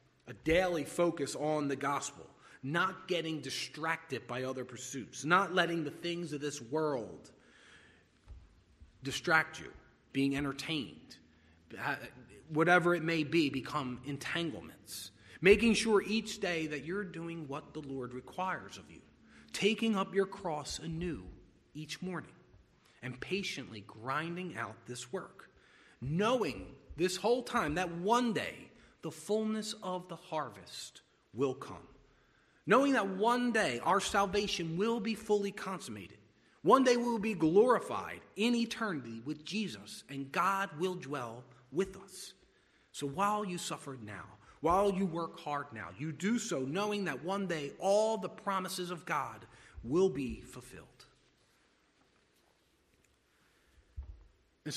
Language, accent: English, American